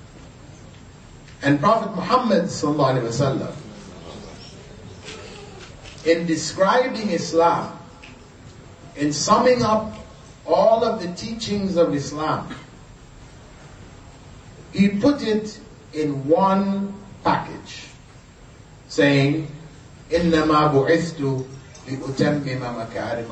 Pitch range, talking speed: 130-195 Hz, 60 wpm